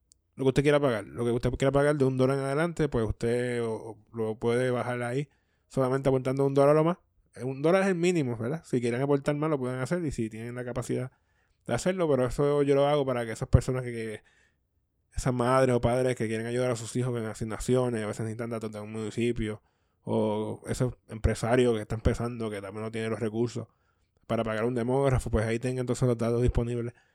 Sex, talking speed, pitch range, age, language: male, 230 wpm, 110-130 Hz, 20-39, Spanish